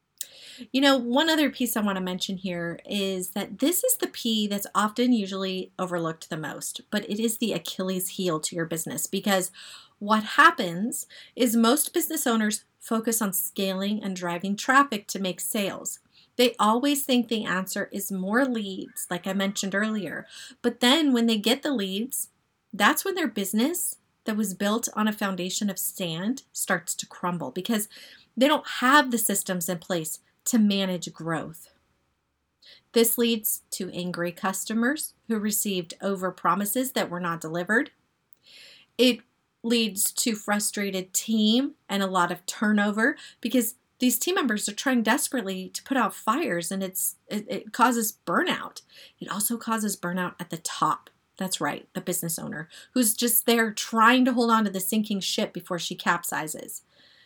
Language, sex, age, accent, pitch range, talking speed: English, female, 30-49, American, 185-240 Hz, 165 wpm